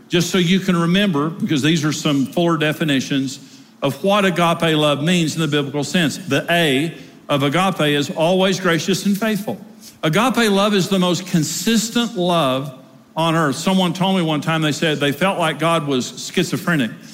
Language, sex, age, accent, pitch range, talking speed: English, male, 50-69, American, 150-190 Hz, 180 wpm